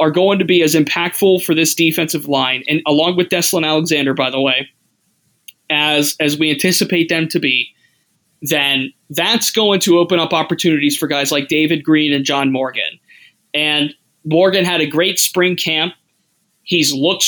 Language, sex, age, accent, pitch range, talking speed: English, male, 20-39, American, 150-175 Hz, 170 wpm